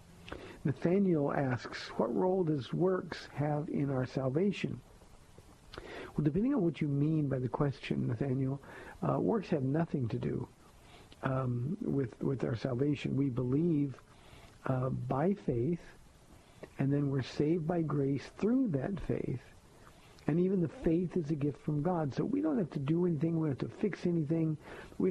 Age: 60-79